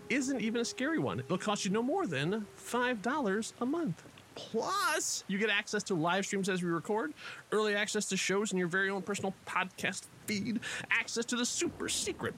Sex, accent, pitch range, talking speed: male, American, 180-255 Hz, 190 wpm